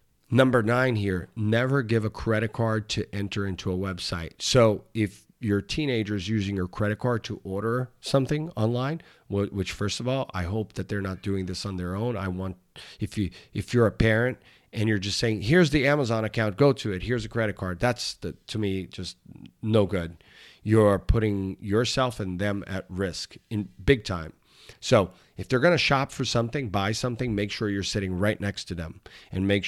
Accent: American